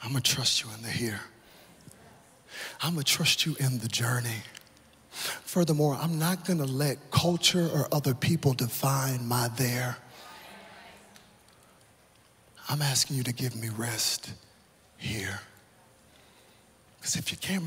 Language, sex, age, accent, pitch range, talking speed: English, male, 40-59, American, 115-140 Hz, 130 wpm